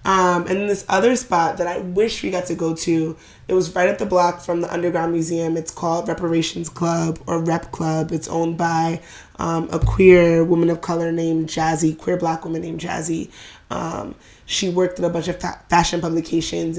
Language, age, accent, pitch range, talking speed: English, 20-39, American, 165-180 Hz, 205 wpm